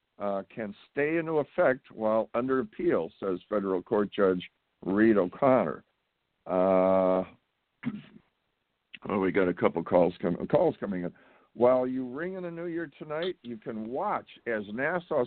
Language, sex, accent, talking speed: English, male, American, 155 wpm